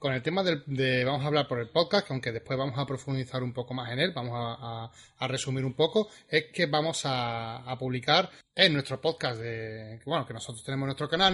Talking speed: 235 wpm